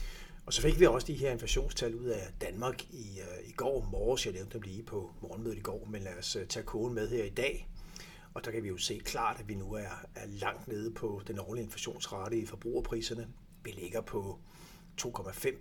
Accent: native